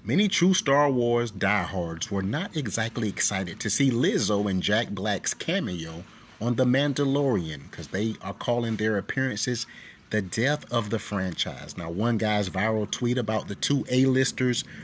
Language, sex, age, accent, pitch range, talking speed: English, male, 30-49, American, 105-135 Hz, 160 wpm